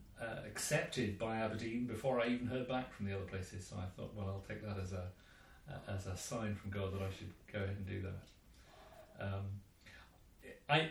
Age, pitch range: 40-59, 95-125 Hz